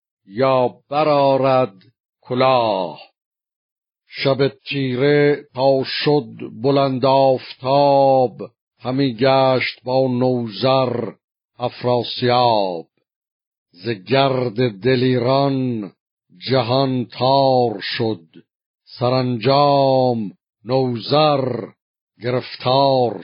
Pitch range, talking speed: 115-135 Hz, 55 wpm